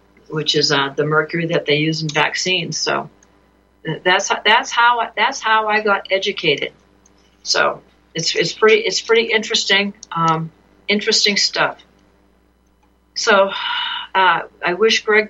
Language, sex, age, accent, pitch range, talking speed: English, female, 50-69, American, 160-195 Hz, 135 wpm